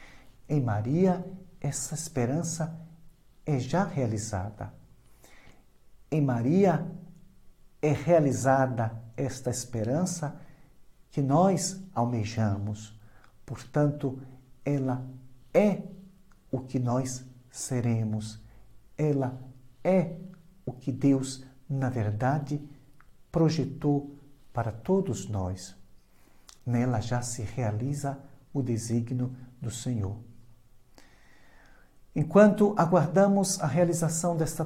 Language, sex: Portuguese, male